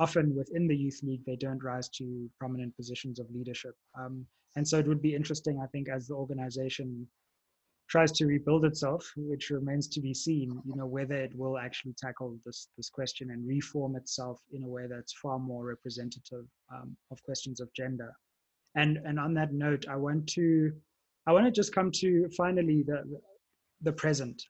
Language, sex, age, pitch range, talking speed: English, male, 20-39, 130-155 Hz, 190 wpm